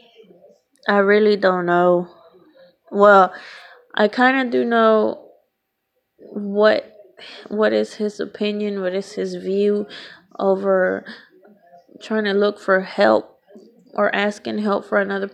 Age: 20-39